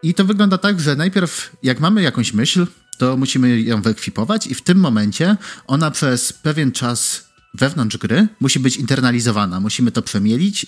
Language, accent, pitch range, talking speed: Polish, native, 110-145 Hz, 170 wpm